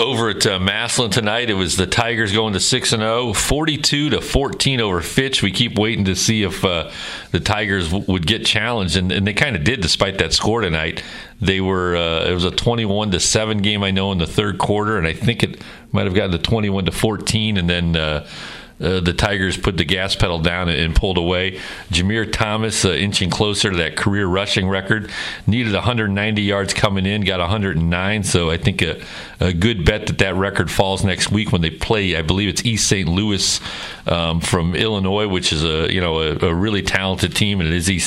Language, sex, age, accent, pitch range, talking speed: English, male, 40-59, American, 90-110 Hz, 220 wpm